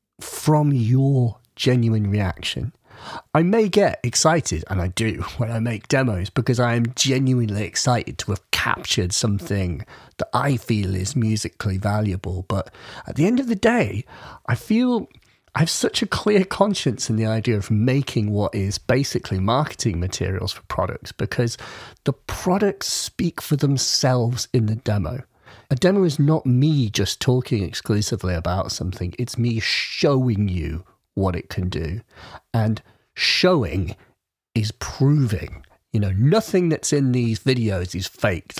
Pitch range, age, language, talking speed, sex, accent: 100-130 Hz, 40-59, English, 150 wpm, male, British